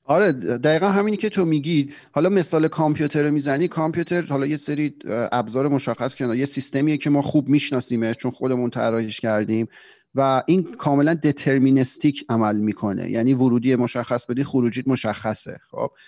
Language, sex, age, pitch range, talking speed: Persian, male, 40-59, 115-140 Hz, 150 wpm